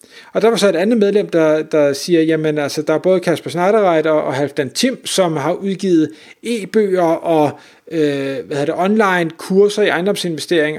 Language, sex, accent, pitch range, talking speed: Danish, male, native, 155-205 Hz, 170 wpm